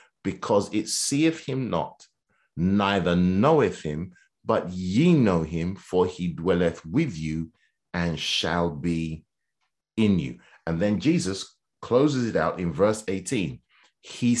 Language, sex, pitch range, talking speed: English, male, 85-105 Hz, 135 wpm